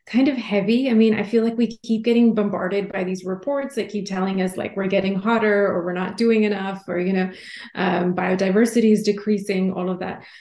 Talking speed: 220 wpm